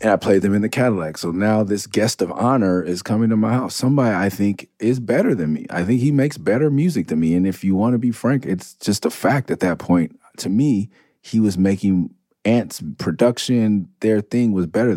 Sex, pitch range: male, 85-110 Hz